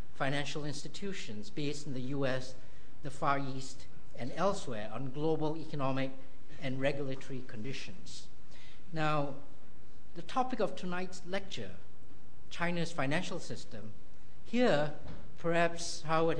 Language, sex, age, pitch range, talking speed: English, male, 60-79, 130-160 Hz, 105 wpm